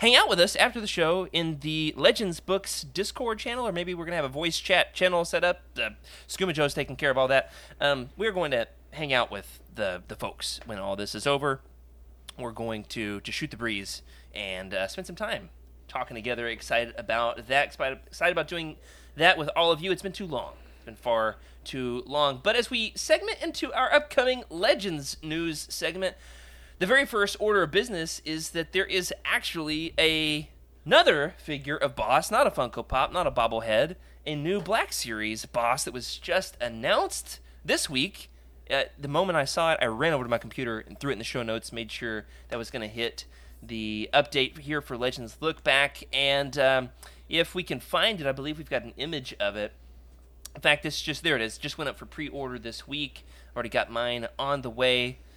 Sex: male